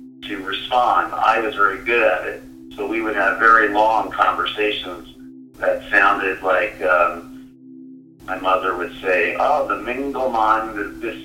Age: 50-69